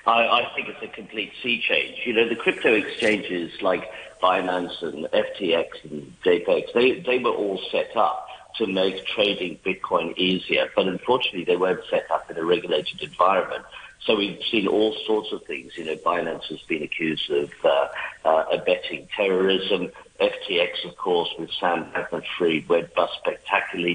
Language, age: English, 50-69